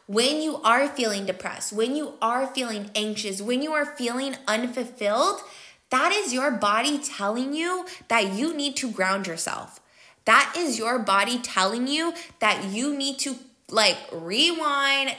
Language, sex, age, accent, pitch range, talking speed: English, female, 20-39, American, 205-250 Hz, 155 wpm